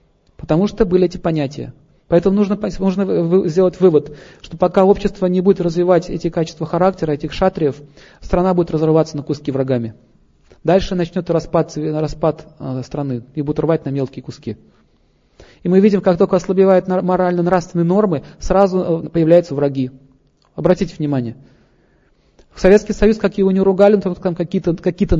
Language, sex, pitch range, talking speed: Russian, male, 150-185 Hz, 145 wpm